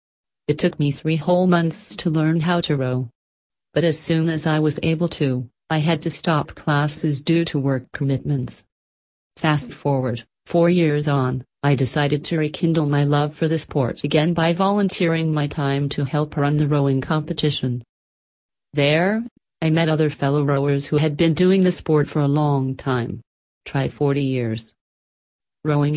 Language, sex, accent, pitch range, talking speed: English, female, American, 140-165 Hz, 170 wpm